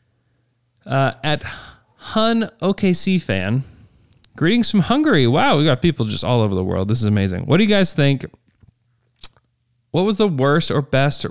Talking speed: 165 wpm